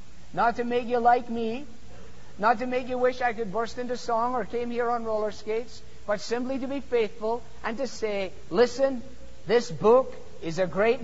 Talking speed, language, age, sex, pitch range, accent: 195 wpm, English, 50-69, male, 205-255 Hz, American